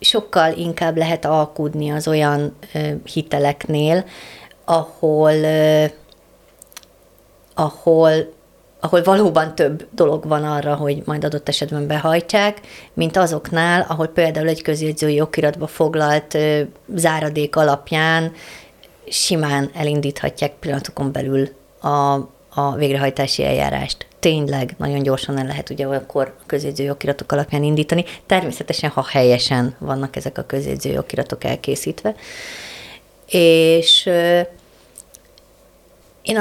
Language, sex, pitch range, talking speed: Hungarian, female, 145-175 Hz, 95 wpm